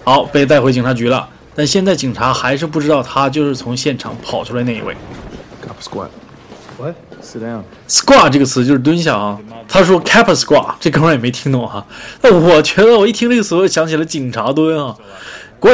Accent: native